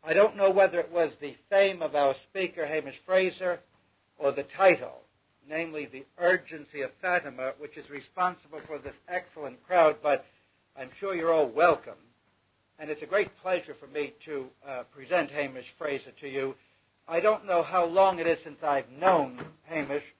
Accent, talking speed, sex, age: American, 175 wpm, male, 60-79